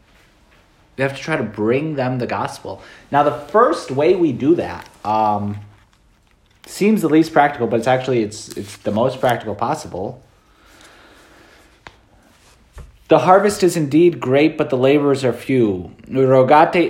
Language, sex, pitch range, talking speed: English, male, 105-140 Hz, 145 wpm